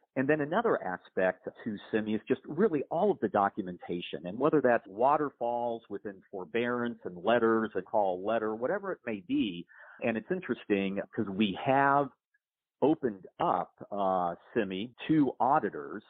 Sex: male